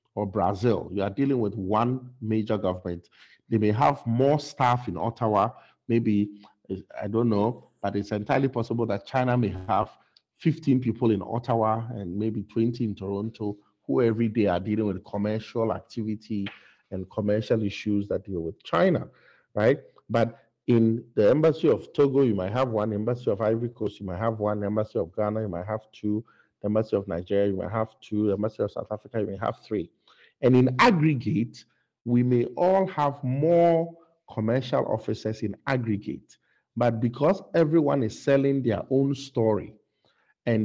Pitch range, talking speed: 105-130 Hz, 175 wpm